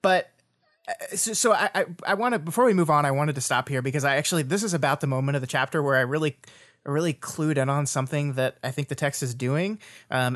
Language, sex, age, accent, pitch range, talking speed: English, male, 20-39, American, 130-165 Hz, 235 wpm